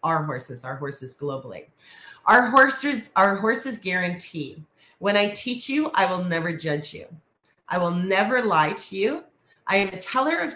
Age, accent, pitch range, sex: 30-49, American, 150-200 Hz, female